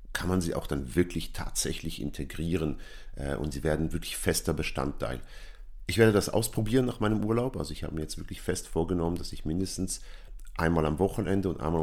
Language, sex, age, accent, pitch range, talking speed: German, male, 50-69, German, 75-95 Hz, 190 wpm